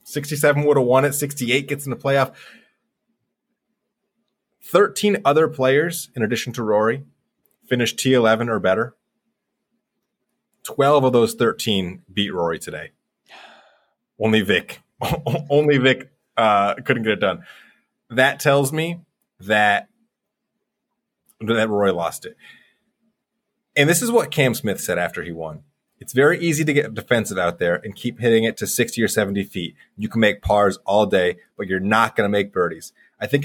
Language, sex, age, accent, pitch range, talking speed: English, male, 30-49, American, 110-165 Hz, 155 wpm